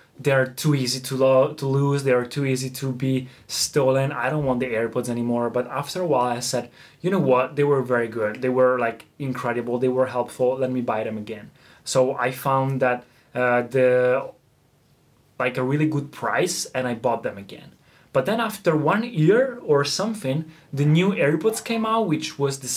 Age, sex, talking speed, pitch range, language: 20-39, male, 205 wpm, 130-170 Hz, Italian